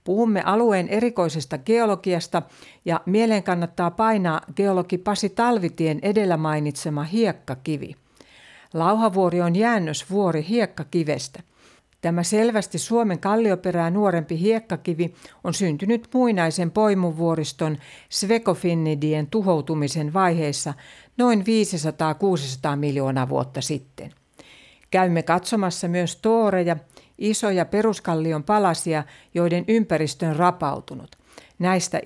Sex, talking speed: female, 90 wpm